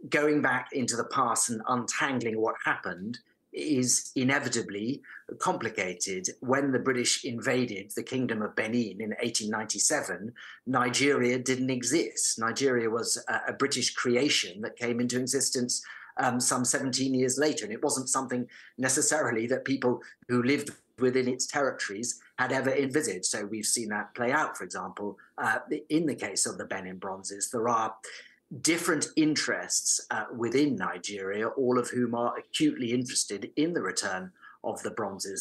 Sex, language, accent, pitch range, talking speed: male, English, British, 115-145 Hz, 150 wpm